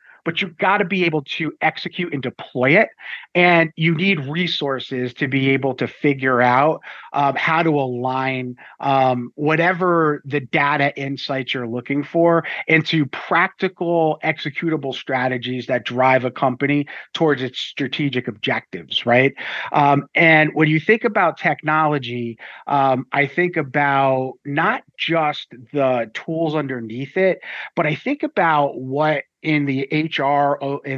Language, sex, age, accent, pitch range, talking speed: English, male, 30-49, American, 130-160 Hz, 140 wpm